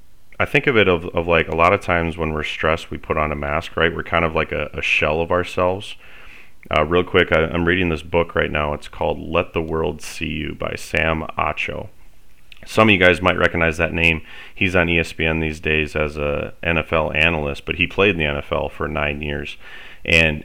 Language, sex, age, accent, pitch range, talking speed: English, male, 30-49, American, 75-85 Hz, 225 wpm